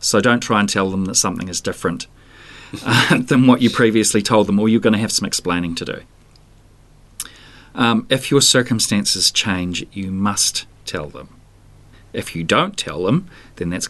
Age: 40-59